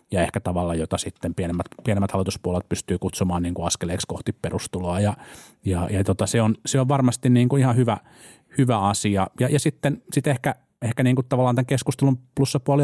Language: Finnish